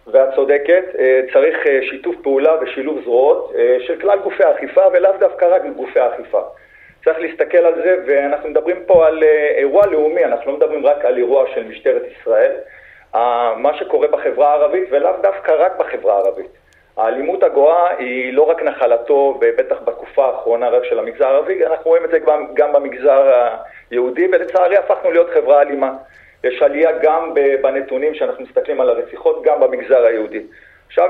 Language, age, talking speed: Hebrew, 40-59, 155 wpm